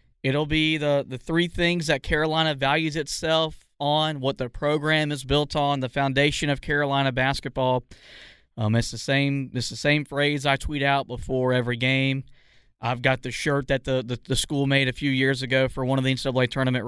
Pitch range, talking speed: 130-155 Hz, 200 wpm